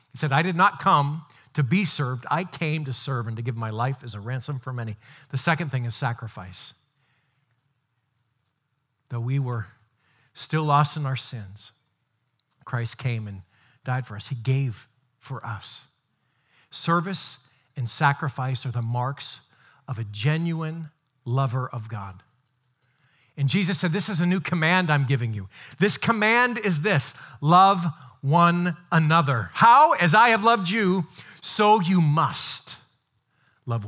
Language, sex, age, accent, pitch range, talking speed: Italian, male, 40-59, American, 120-160 Hz, 150 wpm